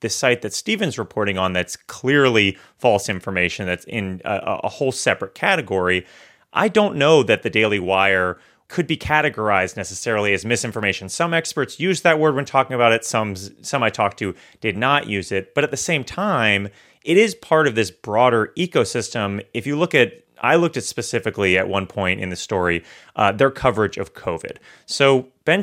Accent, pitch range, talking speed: American, 100-135 Hz, 190 wpm